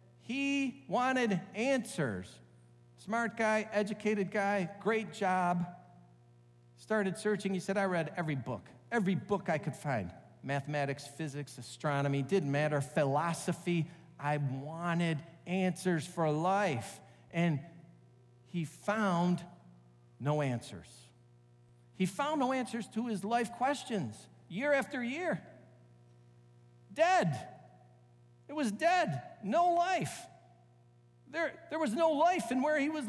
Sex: male